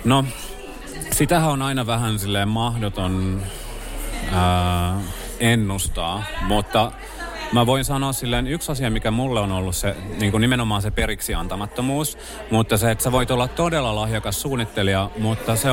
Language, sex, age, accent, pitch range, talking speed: Finnish, male, 30-49, native, 100-115 Hz, 145 wpm